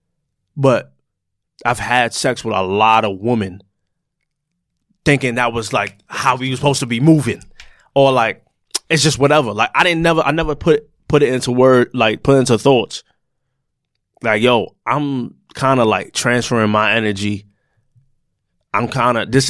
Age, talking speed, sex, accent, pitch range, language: 20-39, 165 wpm, male, American, 110-140 Hz, English